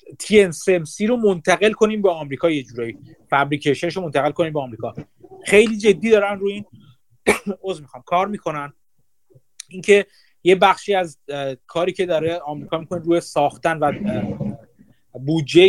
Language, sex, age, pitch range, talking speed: Persian, male, 30-49, 140-185 Hz, 140 wpm